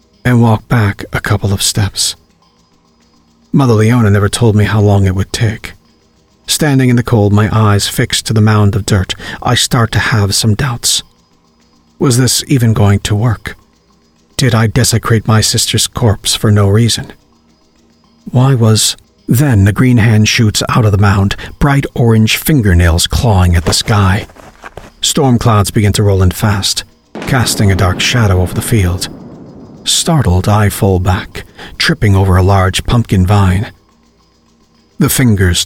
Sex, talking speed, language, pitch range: male, 160 wpm, English, 95-115 Hz